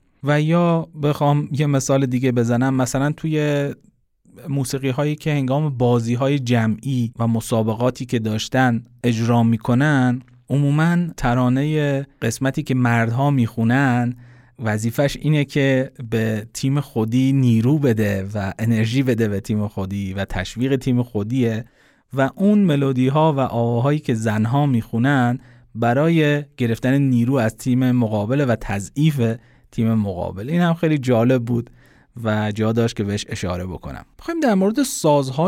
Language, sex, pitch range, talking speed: Persian, male, 110-145 Hz, 135 wpm